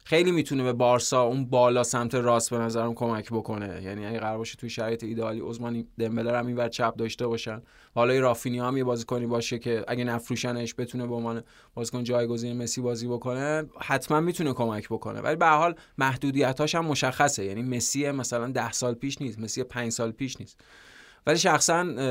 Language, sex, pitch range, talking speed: Persian, male, 115-130 Hz, 185 wpm